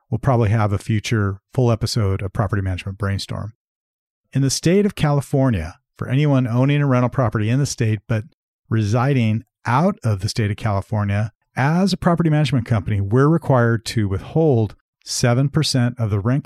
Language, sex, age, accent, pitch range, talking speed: English, male, 50-69, American, 105-130 Hz, 170 wpm